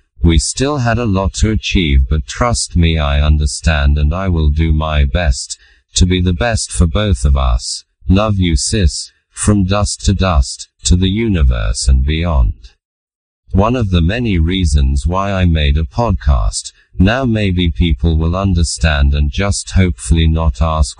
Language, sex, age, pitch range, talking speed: English, male, 40-59, 75-95 Hz, 165 wpm